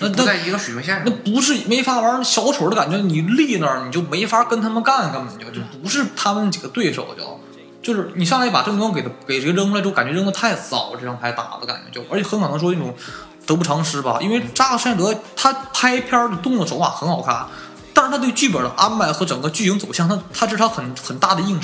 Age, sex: 20-39, male